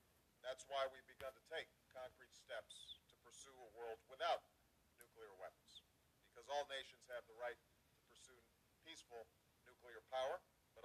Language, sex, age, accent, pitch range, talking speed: English, male, 50-69, American, 115-135 Hz, 150 wpm